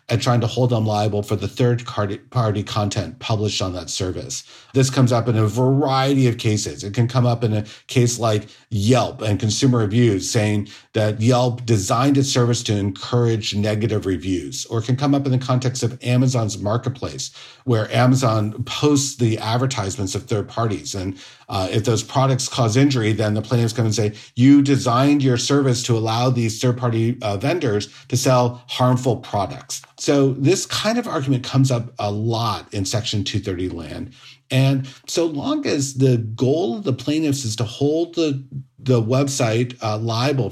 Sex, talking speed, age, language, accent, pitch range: male, 180 wpm, 50-69, English, American, 115-140 Hz